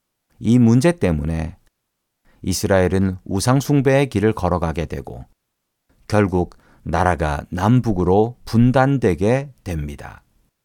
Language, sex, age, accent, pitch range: Korean, male, 40-59, native, 90-130 Hz